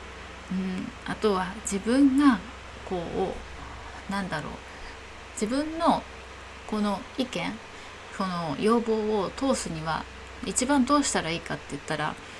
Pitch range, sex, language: 150-205 Hz, female, Japanese